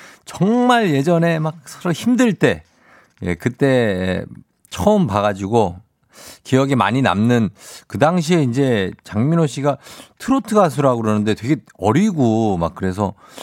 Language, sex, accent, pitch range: Korean, male, native, 105-160 Hz